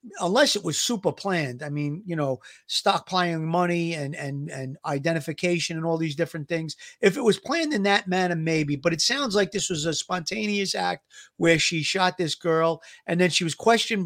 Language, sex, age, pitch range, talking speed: English, male, 40-59, 155-190 Hz, 195 wpm